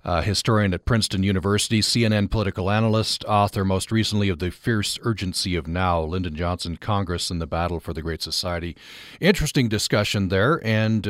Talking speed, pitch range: 170 wpm, 95-125 Hz